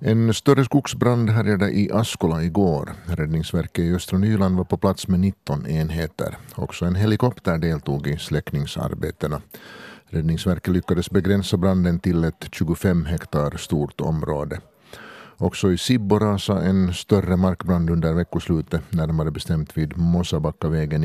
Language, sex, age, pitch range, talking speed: Swedish, male, 50-69, 80-100 Hz, 130 wpm